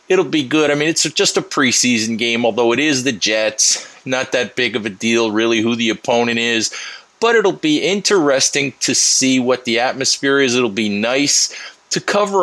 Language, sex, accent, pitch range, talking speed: English, male, American, 120-155 Hz, 200 wpm